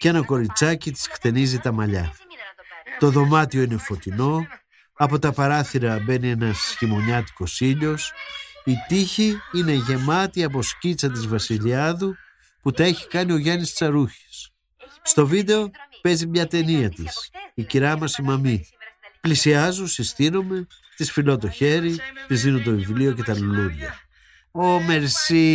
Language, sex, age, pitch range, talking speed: Greek, male, 50-69, 115-175 Hz, 135 wpm